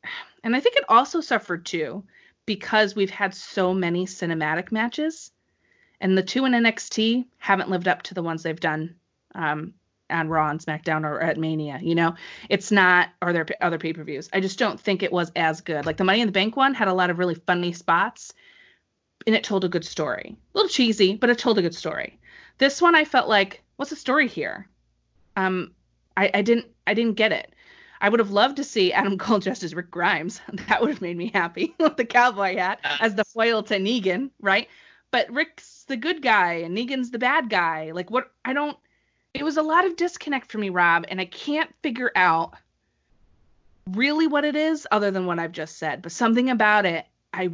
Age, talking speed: 30-49, 210 wpm